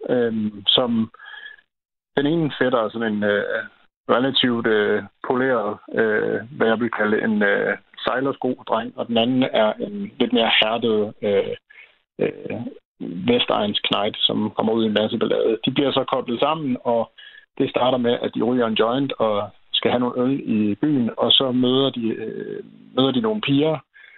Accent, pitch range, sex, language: native, 115-180 Hz, male, Danish